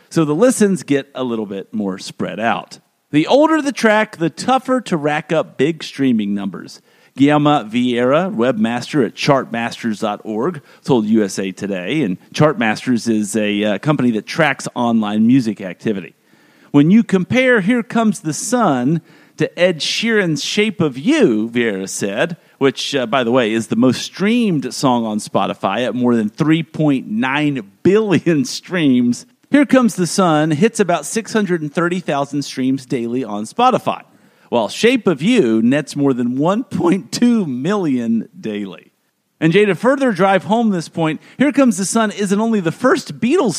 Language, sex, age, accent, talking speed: English, male, 50-69, American, 155 wpm